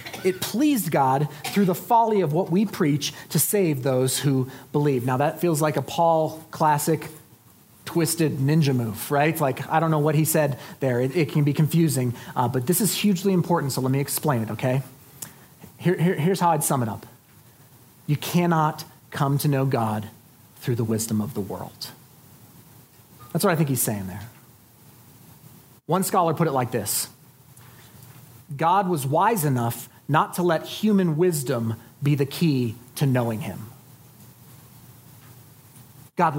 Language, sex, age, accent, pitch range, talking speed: English, male, 40-59, American, 125-165 Hz, 165 wpm